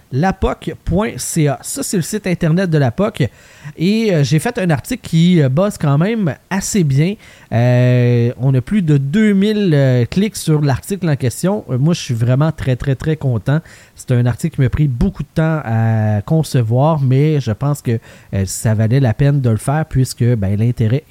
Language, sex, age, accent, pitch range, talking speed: French, male, 30-49, Canadian, 125-175 Hz, 195 wpm